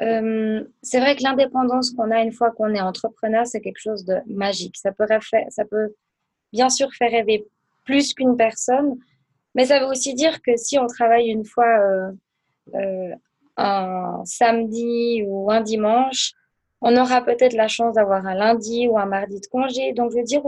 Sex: female